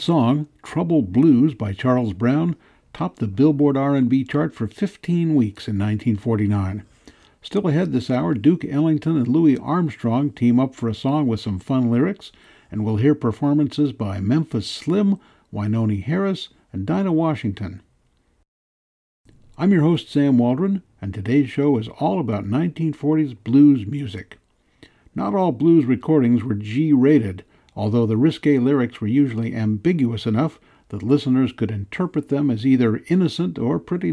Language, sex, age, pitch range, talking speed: English, male, 60-79, 110-155 Hz, 150 wpm